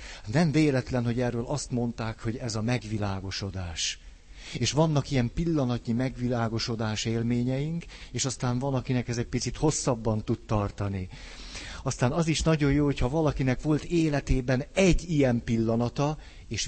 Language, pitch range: Hungarian, 105-140 Hz